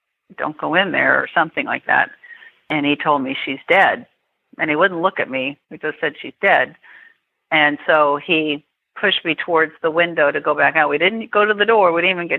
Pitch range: 150-180 Hz